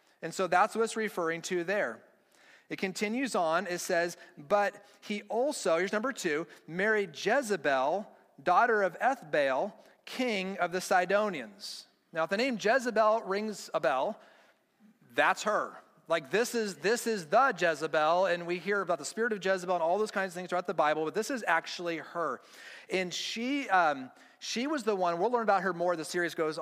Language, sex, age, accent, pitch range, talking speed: English, male, 40-59, American, 175-225 Hz, 185 wpm